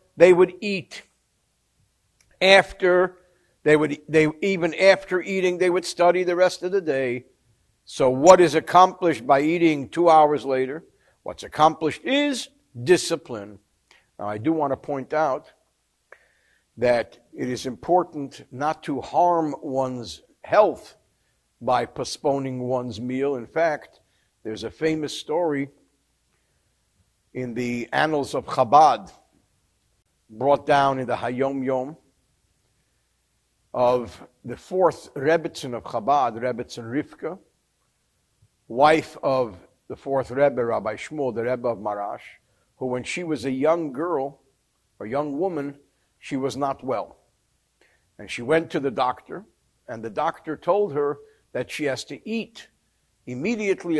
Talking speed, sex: 130 wpm, male